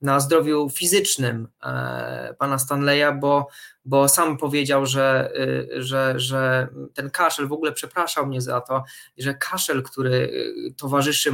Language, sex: Polish, male